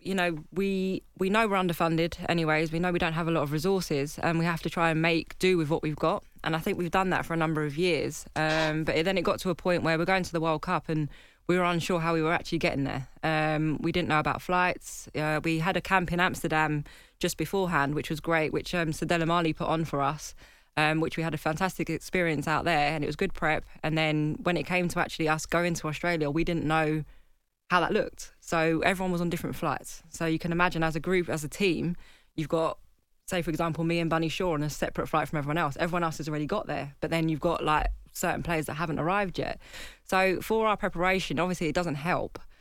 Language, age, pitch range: English, 20-39, 155-175 Hz